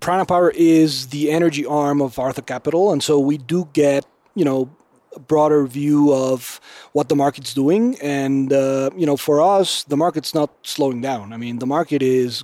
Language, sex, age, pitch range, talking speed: English, male, 30-49, 135-155 Hz, 195 wpm